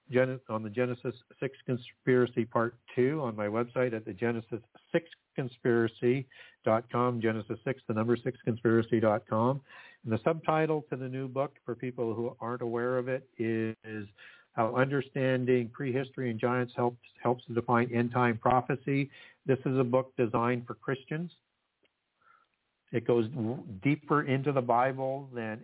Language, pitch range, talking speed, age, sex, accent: English, 115-135 Hz, 145 wpm, 60-79, male, American